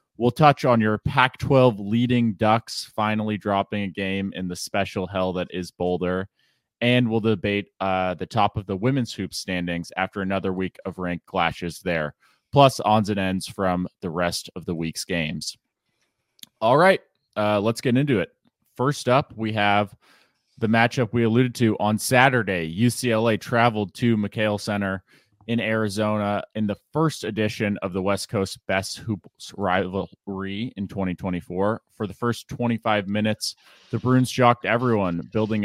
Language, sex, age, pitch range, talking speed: English, male, 20-39, 95-115 Hz, 160 wpm